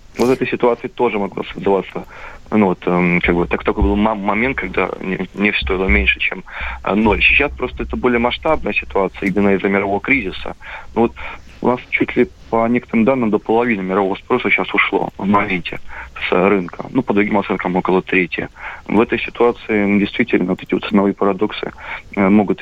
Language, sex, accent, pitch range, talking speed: Russian, male, native, 100-120 Hz, 180 wpm